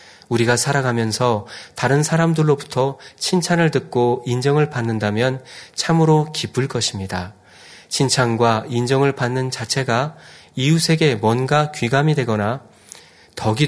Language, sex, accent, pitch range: Korean, male, native, 115-150 Hz